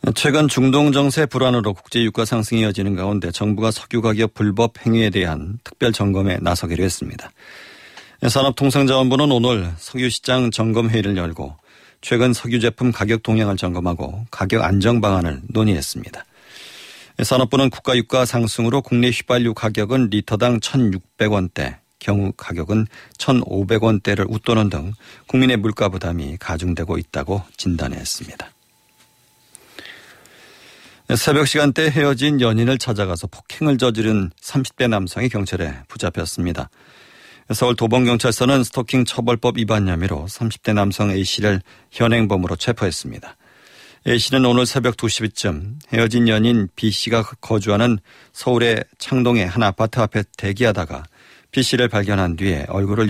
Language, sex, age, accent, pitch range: Korean, male, 40-59, native, 100-125 Hz